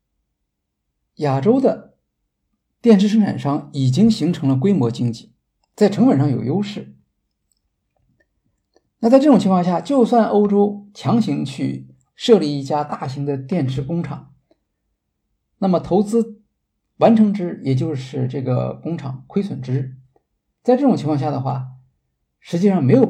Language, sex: Chinese, male